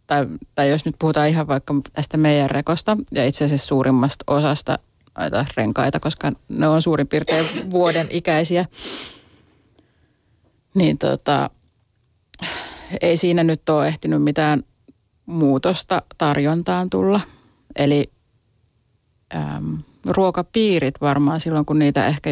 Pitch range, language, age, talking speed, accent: 125-160 Hz, Finnish, 30-49, 110 wpm, native